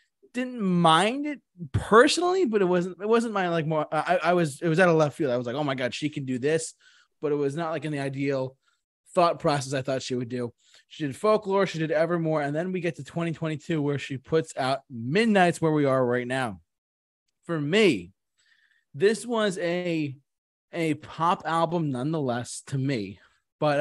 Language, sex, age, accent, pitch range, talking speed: English, male, 20-39, American, 135-175 Hz, 200 wpm